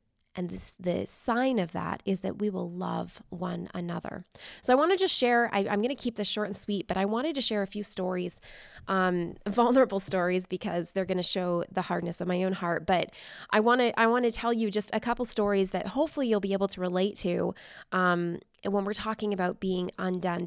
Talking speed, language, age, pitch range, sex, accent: 230 wpm, English, 20-39, 185-215 Hz, female, American